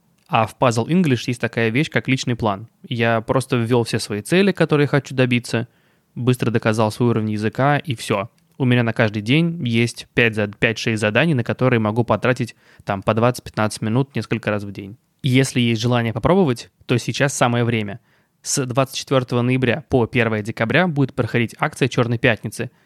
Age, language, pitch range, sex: 20-39, Russian, 115-145 Hz, male